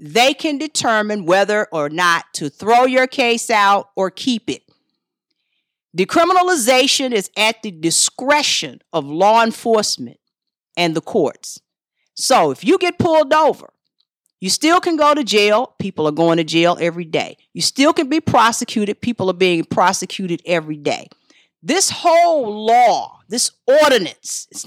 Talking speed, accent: 150 wpm, American